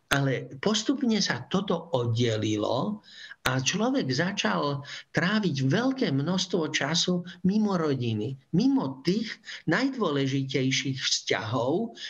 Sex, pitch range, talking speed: male, 135-185 Hz, 90 wpm